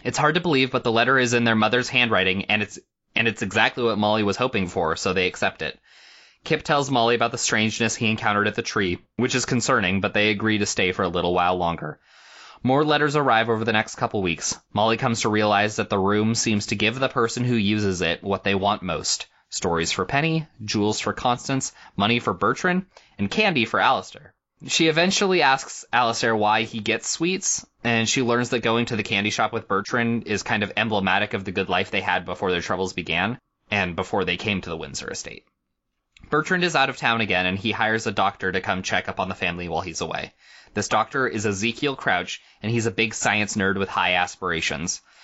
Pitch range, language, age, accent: 100-125 Hz, English, 20-39, American